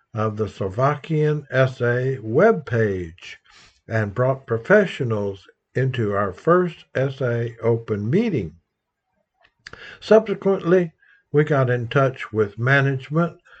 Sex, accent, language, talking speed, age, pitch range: male, American, English, 95 wpm, 60-79, 115-155 Hz